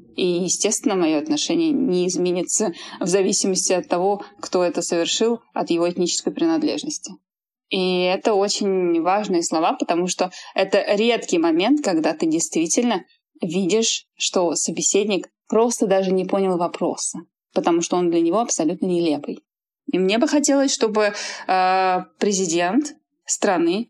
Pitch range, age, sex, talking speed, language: 175-285 Hz, 20-39, female, 130 wpm, Russian